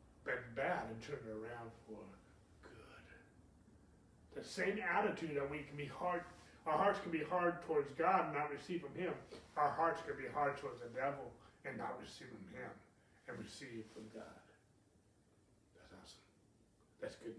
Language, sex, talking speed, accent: English, male, 170 wpm, American